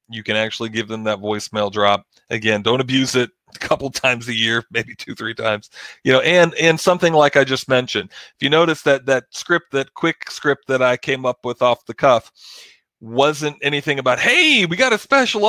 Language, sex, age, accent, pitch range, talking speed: English, male, 40-59, American, 120-150 Hz, 215 wpm